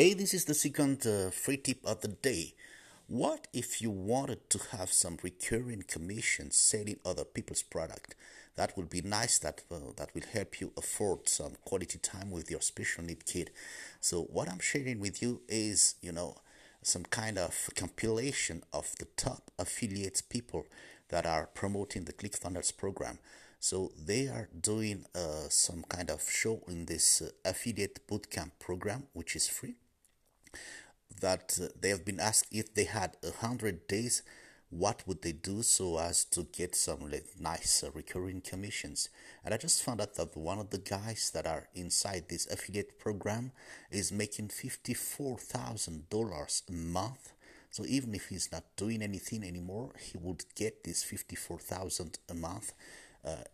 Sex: male